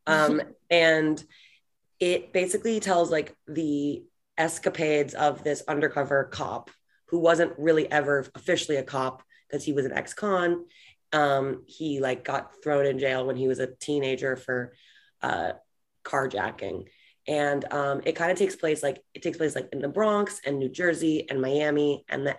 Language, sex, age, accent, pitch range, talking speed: English, female, 20-39, American, 135-165 Hz, 165 wpm